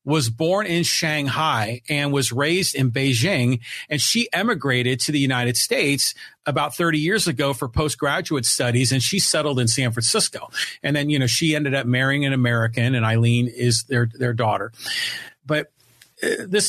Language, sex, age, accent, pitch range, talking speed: English, male, 40-59, American, 130-175 Hz, 175 wpm